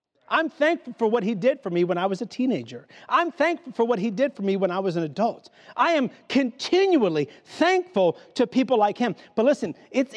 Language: English